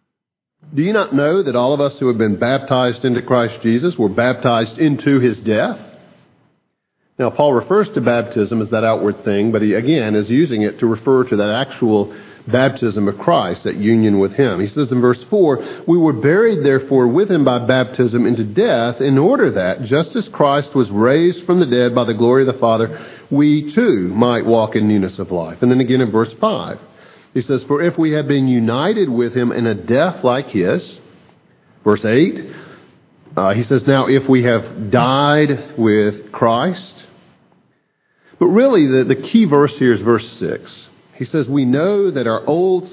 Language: English